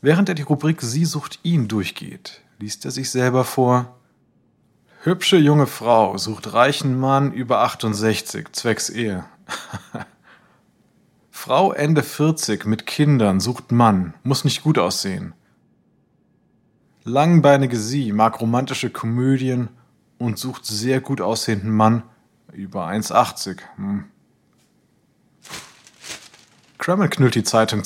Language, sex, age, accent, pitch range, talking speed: German, male, 20-39, German, 110-155 Hz, 110 wpm